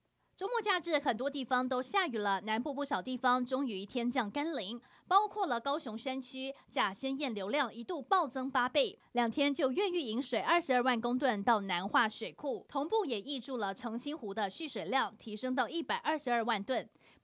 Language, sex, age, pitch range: Chinese, female, 20-39, 225-285 Hz